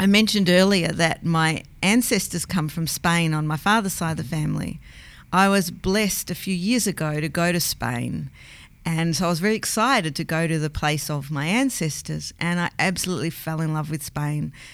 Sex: female